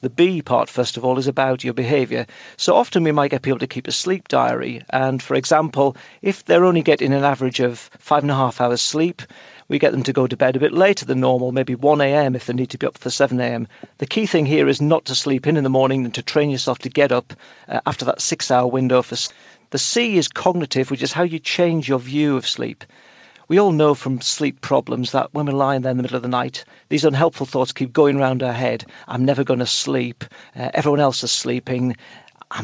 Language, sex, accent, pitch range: English, male, British, 130-155 Hz